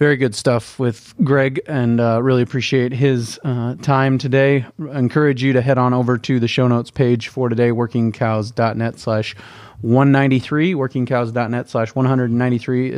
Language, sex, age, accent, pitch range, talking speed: English, male, 30-49, American, 115-135 Hz, 150 wpm